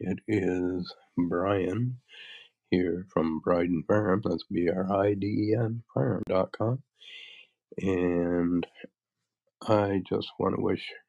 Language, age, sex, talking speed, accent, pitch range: English, 50-69, male, 85 wpm, American, 90-105 Hz